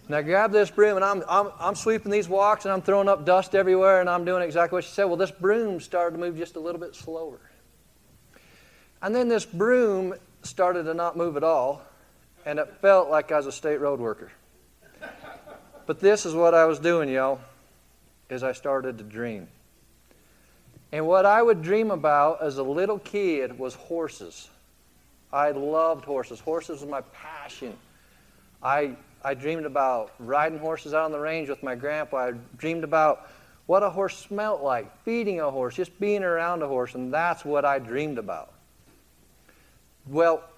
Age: 50-69